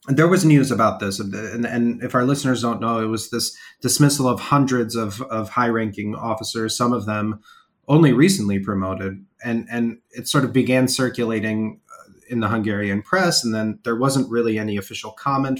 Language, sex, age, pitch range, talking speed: English, male, 30-49, 105-130 Hz, 185 wpm